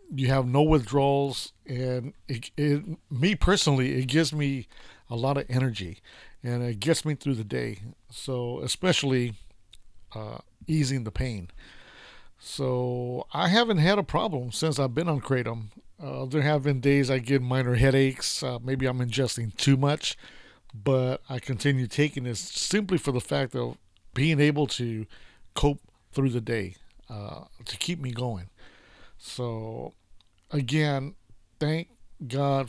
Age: 50-69